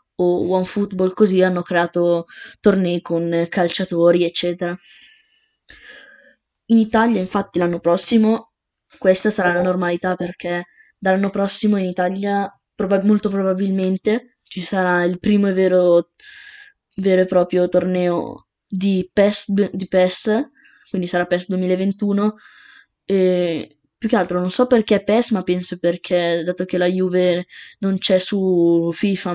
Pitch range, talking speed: 180-200 Hz, 130 wpm